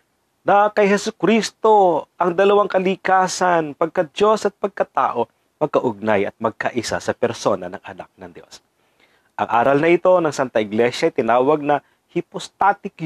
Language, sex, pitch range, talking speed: Filipino, male, 120-175 Hz, 135 wpm